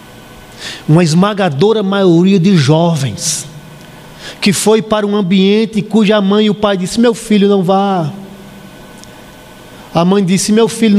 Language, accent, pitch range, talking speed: Portuguese, Brazilian, 190-255 Hz, 135 wpm